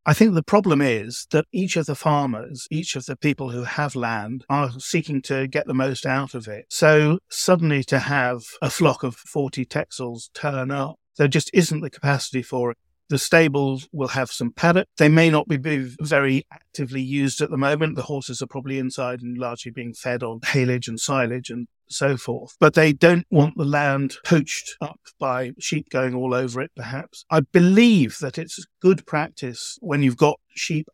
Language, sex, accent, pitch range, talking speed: English, male, British, 125-150 Hz, 195 wpm